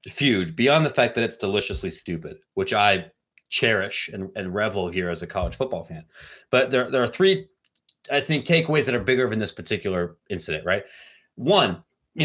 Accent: American